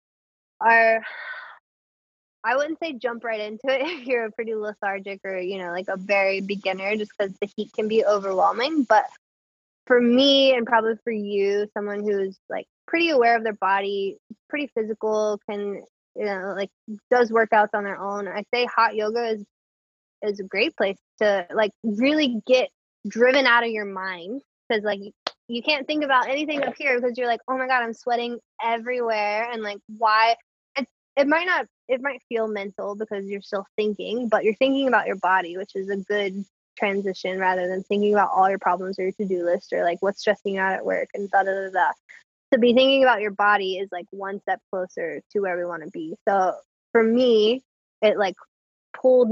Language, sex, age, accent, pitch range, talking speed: English, female, 20-39, American, 195-245 Hz, 195 wpm